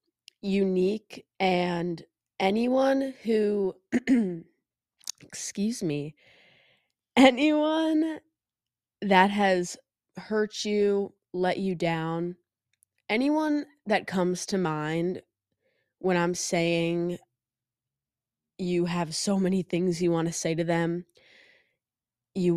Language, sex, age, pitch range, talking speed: English, female, 20-39, 170-220 Hz, 90 wpm